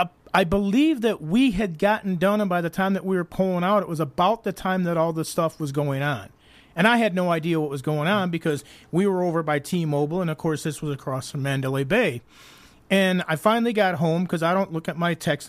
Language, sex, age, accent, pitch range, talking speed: English, male, 40-59, American, 150-195 Hz, 250 wpm